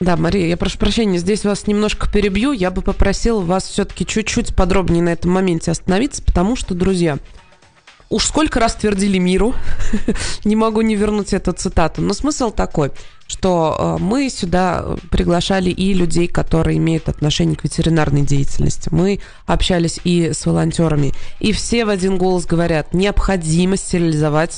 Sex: female